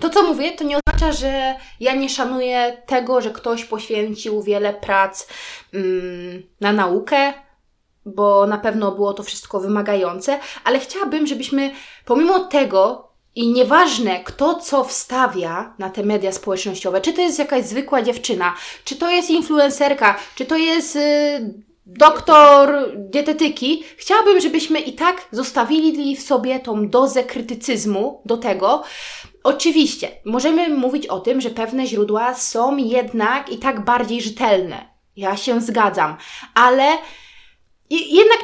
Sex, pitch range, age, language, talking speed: female, 225-300 Hz, 20-39, Polish, 135 wpm